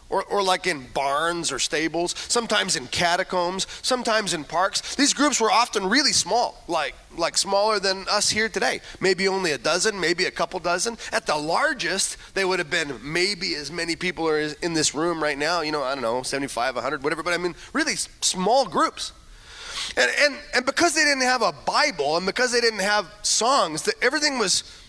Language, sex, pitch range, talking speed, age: English, male, 175-245 Hz, 200 wpm, 30-49